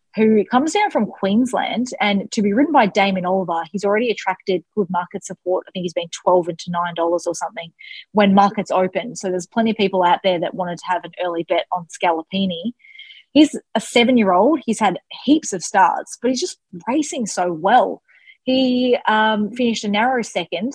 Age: 20-39